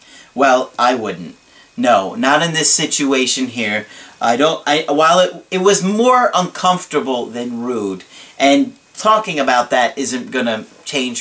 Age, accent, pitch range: 40-59, American, 130-180 Hz